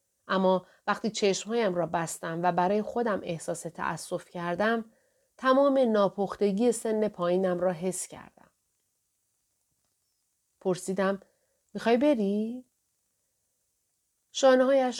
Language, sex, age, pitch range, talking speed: Persian, female, 40-59, 165-210 Hz, 90 wpm